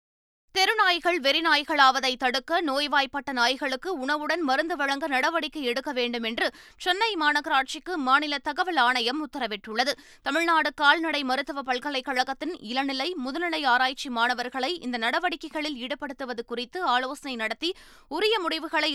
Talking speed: 110 wpm